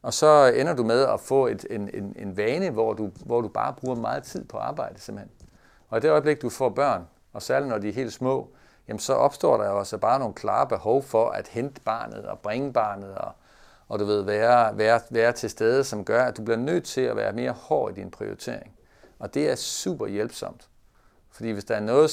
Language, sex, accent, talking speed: Danish, male, native, 230 wpm